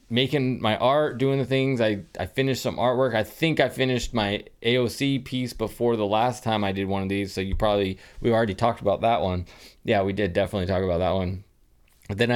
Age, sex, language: 20-39, male, English